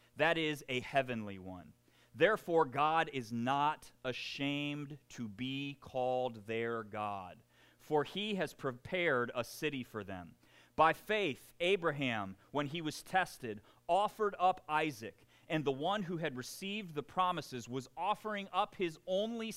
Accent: American